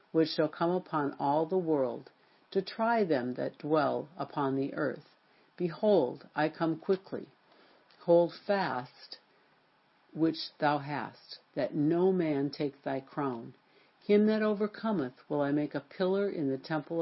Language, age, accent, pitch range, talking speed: English, 60-79, American, 145-180 Hz, 145 wpm